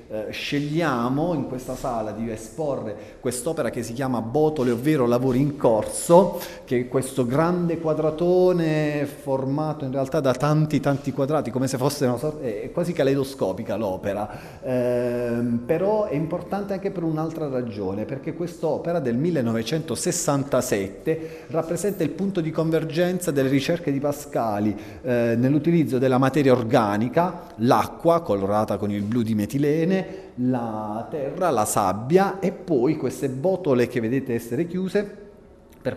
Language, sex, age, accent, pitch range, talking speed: Italian, male, 30-49, native, 115-150 Hz, 135 wpm